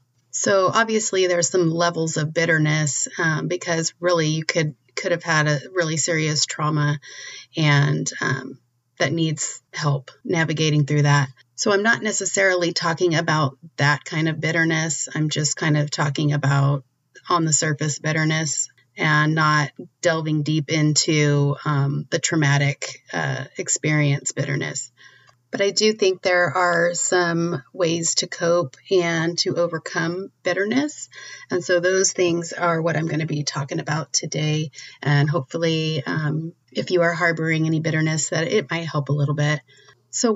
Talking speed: 150 wpm